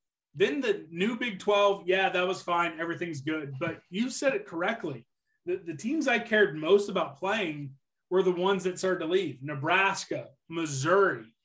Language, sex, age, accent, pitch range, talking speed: English, male, 30-49, American, 155-200 Hz, 175 wpm